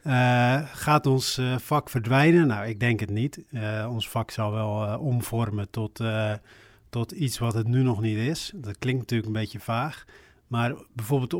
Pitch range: 110-130 Hz